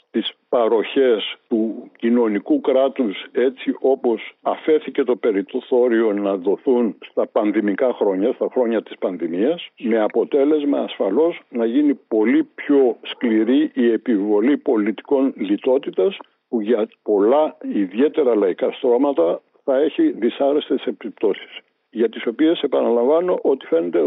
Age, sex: 60-79, male